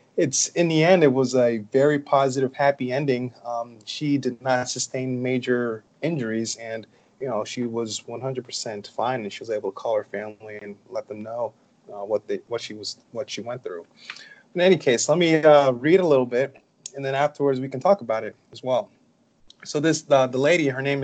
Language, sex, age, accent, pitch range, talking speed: English, male, 30-49, American, 120-145 Hz, 210 wpm